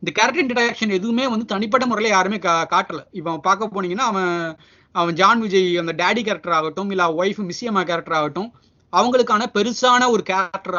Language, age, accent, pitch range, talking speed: Tamil, 30-49, native, 185-235 Hz, 155 wpm